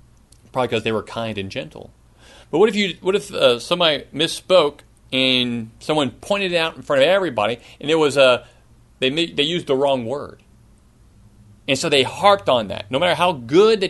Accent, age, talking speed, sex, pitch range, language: American, 40-59, 195 wpm, male, 120-170 Hz, English